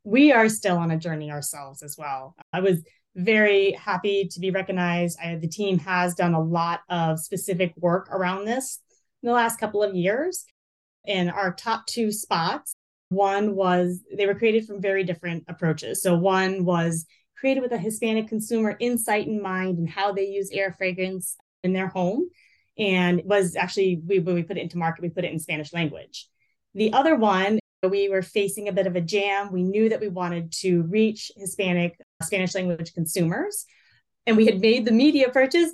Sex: female